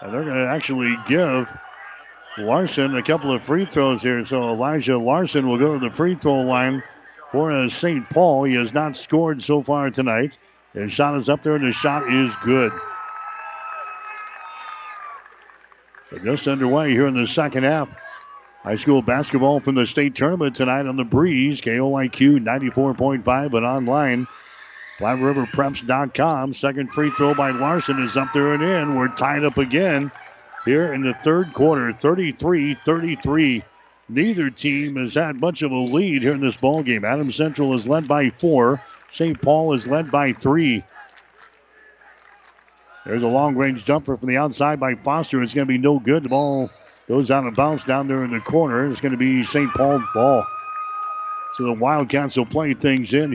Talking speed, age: 170 wpm, 60-79